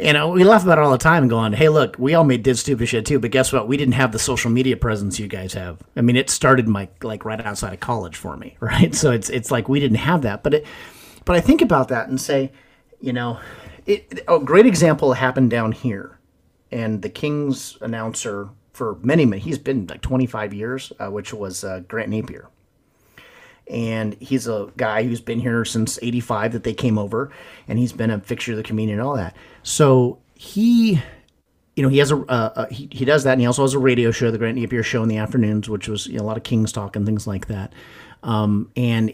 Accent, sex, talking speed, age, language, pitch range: American, male, 240 wpm, 40-59, English, 110-135 Hz